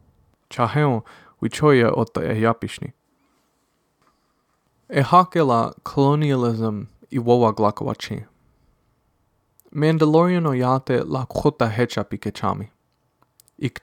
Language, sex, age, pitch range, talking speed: English, male, 20-39, 110-140 Hz, 70 wpm